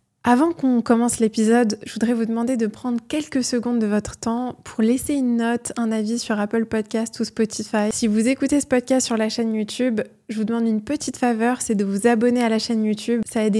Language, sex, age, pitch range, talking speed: French, female, 20-39, 215-245 Hz, 225 wpm